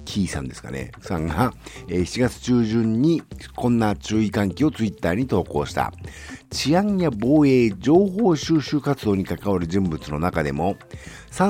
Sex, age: male, 50-69